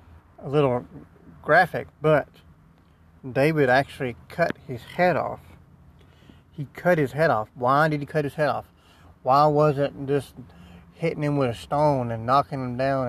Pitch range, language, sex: 100-145 Hz, English, male